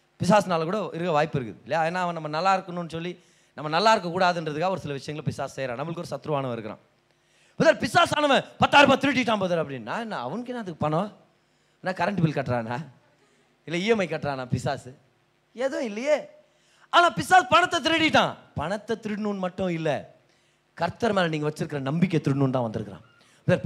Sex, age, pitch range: male, 30-49, 140-205 Hz